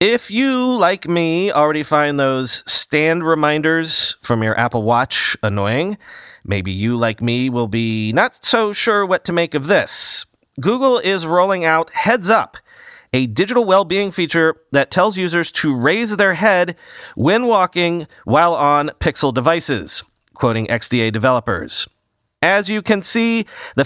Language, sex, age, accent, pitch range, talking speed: English, male, 40-59, American, 140-195 Hz, 150 wpm